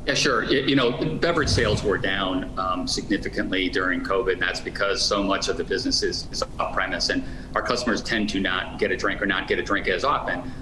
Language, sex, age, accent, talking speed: English, male, 40-59, American, 225 wpm